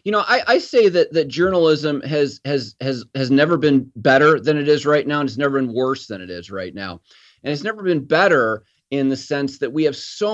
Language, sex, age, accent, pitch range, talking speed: English, male, 30-49, American, 125-150 Hz, 245 wpm